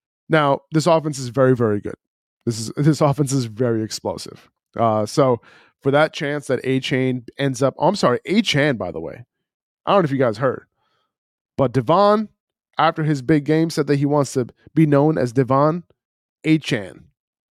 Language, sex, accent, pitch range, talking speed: English, male, American, 125-160 Hz, 185 wpm